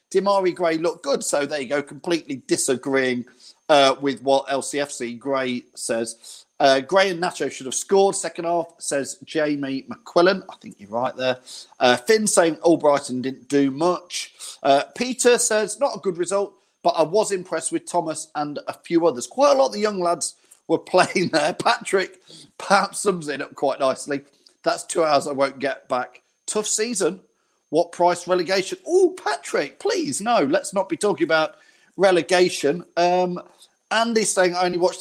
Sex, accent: male, British